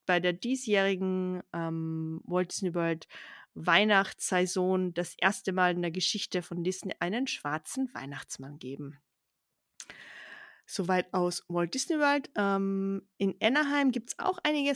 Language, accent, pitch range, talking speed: German, German, 180-225 Hz, 130 wpm